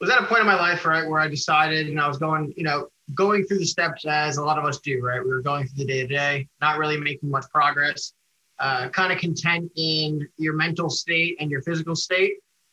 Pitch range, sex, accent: 145-165 Hz, male, American